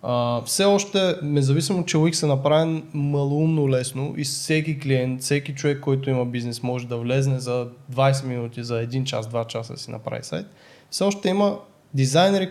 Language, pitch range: Bulgarian, 130-155 Hz